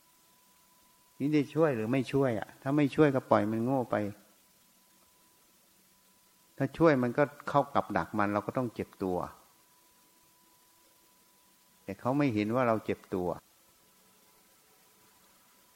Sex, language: male, Thai